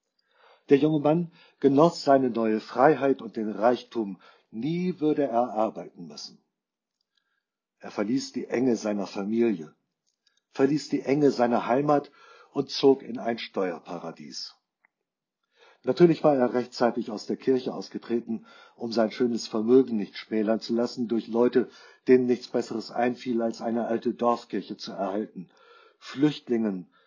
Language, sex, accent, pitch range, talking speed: German, male, German, 110-140 Hz, 135 wpm